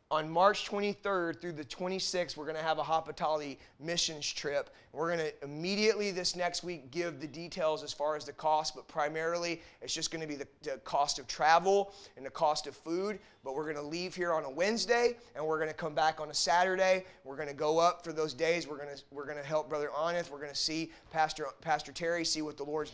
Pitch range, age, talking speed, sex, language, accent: 155-185 Hz, 30-49, 215 wpm, male, English, American